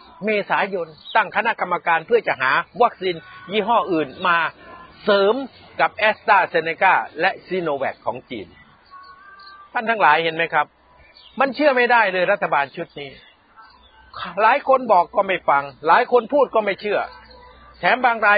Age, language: 60-79, Thai